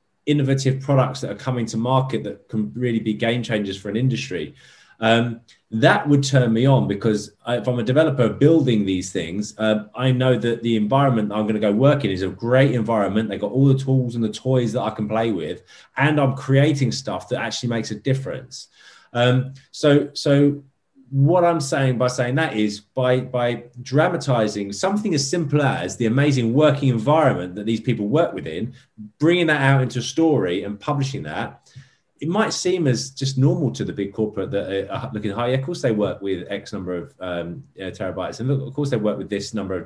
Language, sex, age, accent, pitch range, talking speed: English, male, 20-39, British, 110-140 Hz, 210 wpm